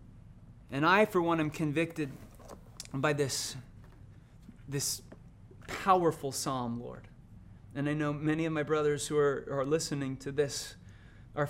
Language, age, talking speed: English, 30-49, 135 wpm